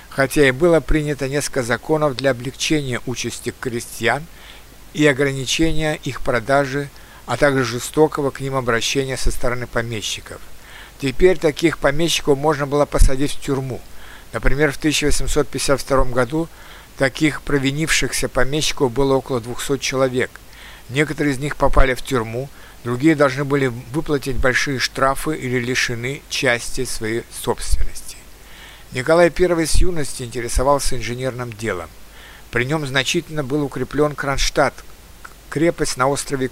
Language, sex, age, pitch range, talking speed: Russian, male, 60-79, 125-150 Hz, 125 wpm